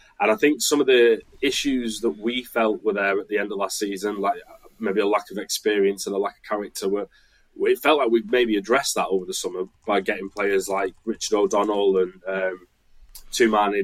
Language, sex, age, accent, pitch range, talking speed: English, male, 20-39, British, 100-125 Hz, 210 wpm